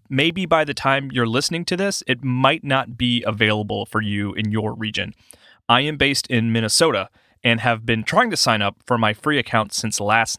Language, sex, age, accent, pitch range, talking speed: English, male, 30-49, American, 110-140 Hz, 210 wpm